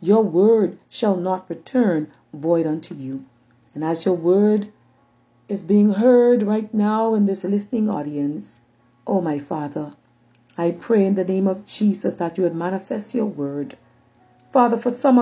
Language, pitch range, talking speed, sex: English, 170-225 Hz, 160 wpm, female